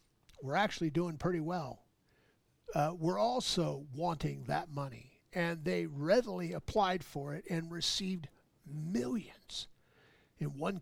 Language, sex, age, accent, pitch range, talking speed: English, male, 50-69, American, 140-185 Hz, 120 wpm